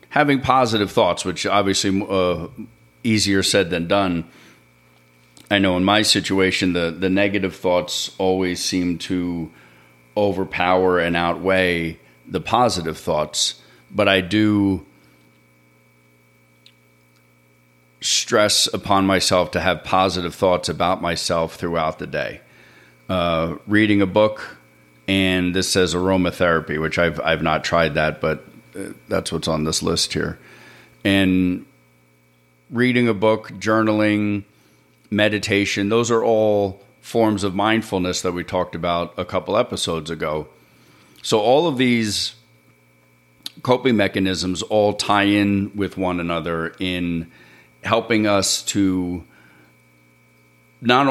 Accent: American